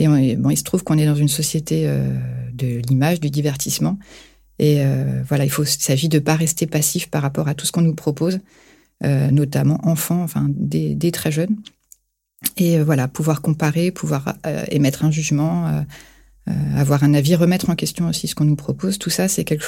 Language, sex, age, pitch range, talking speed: French, female, 30-49, 145-170 Hz, 215 wpm